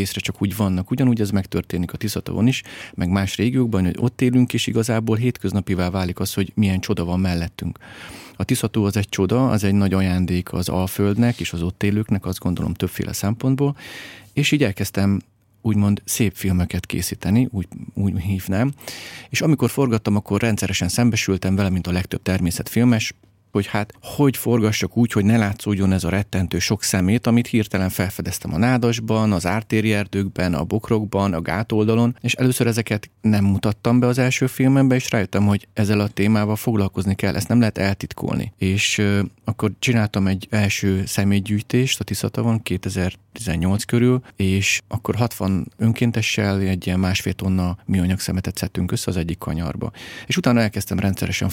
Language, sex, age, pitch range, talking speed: Hungarian, male, 30-49, 95-115 Hz, 165 wpm